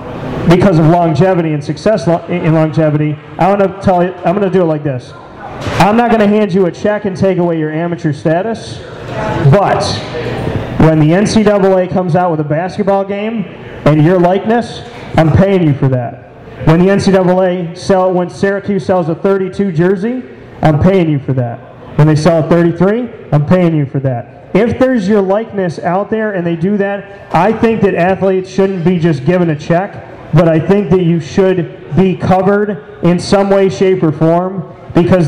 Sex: male